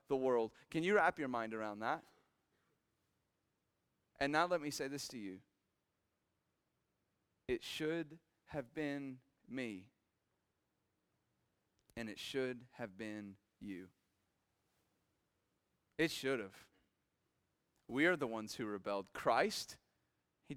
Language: English